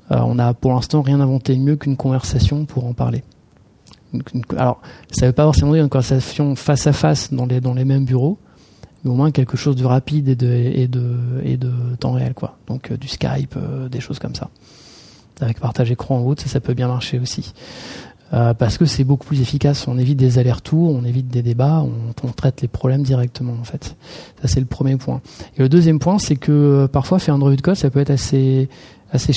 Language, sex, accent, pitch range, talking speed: French, male, French, 125-145 Hz, 220 wpm